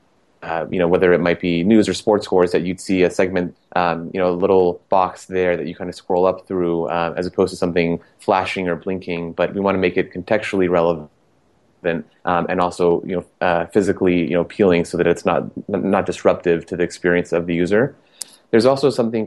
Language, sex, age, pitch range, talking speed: English, male, 30-49, 85-95 Hz, 220 wpm